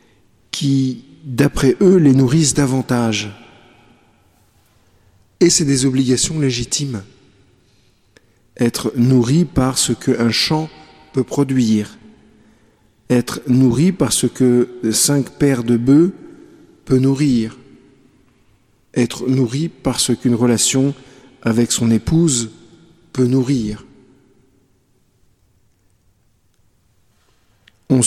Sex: male